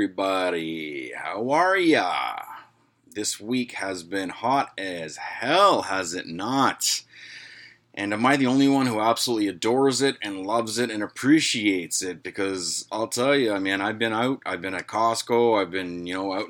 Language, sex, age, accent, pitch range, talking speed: English, male, 30-49, American, 100-135 Hz, 175 wpm